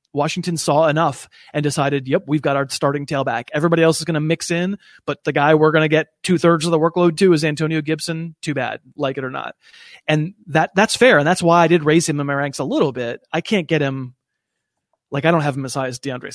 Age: 30-49